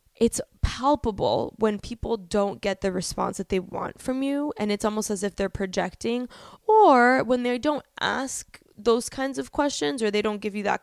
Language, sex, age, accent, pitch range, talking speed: English, female, 10-29, American, 205-260 Hz, 195 wpm